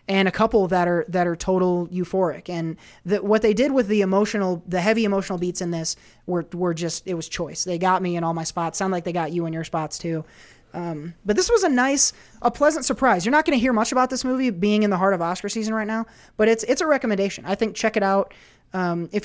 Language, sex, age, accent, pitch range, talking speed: English, male, 20-39, American, 175-215 Hz, 260 wpm